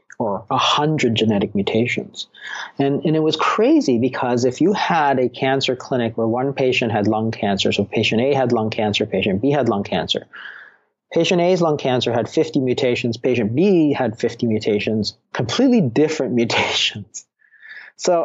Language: English